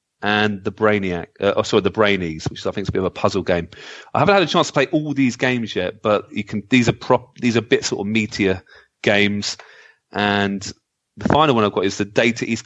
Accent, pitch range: British, 100-125 Hz